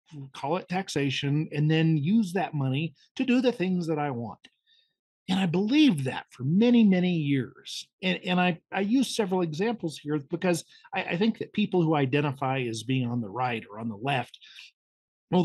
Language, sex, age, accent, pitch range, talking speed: English, male, 50-69, American, 145-210 Hz, 190 wpm